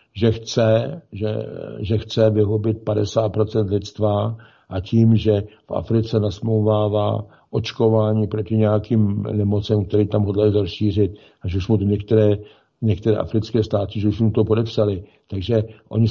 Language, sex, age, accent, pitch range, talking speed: Czech, male, 60-79, native, 105-115 Hz, 140 wpm